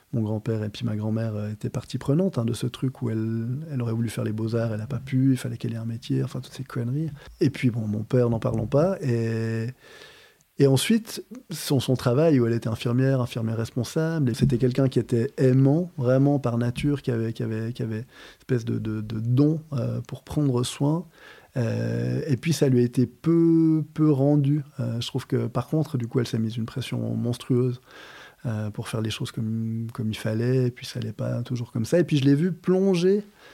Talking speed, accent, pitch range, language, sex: 225 wpm, French, 120-145 Hz, French, male